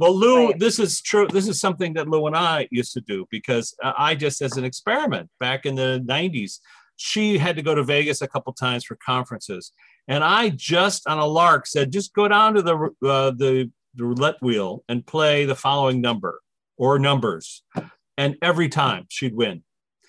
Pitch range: 135-190 Hz